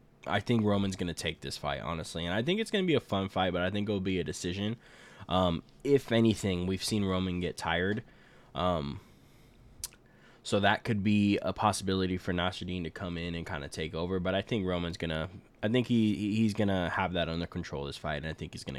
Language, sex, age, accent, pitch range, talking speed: English, male, 10-29, American, 85-105 Hz, 235 wpm